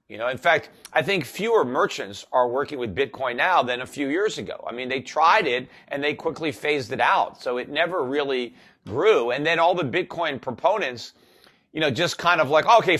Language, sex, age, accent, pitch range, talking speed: English, male, 40-59, American, 135-170 Hz, 215 wpm